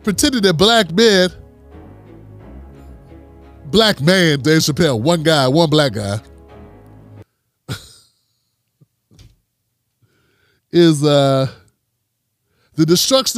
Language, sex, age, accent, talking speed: English, male, 30-49, American, 75 wpm